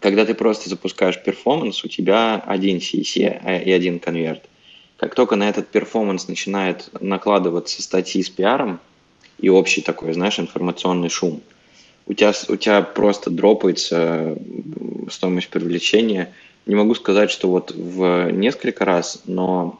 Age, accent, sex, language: 20-39, native, male, Russian